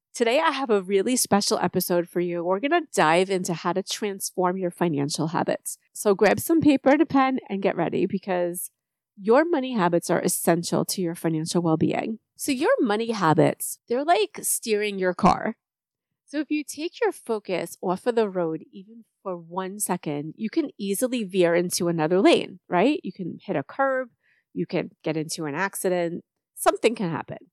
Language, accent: English, American